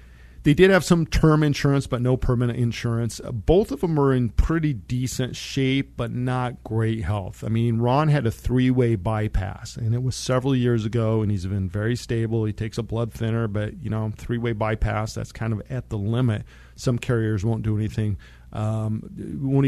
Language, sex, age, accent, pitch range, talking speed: English, male, 50-69, American, 105-125 Hz, 190 wpm